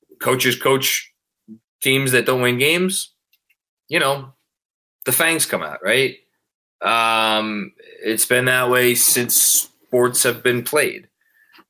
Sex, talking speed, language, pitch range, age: male, 125 wpm, English, 110-140 Hz, 20-39